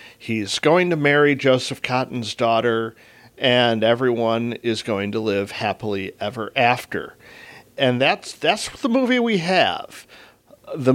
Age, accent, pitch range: 50-69, American, 110-130 Hz